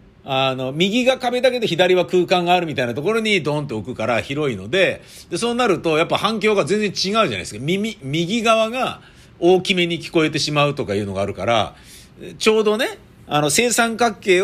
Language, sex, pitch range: Japanese, male, 135-210 Hz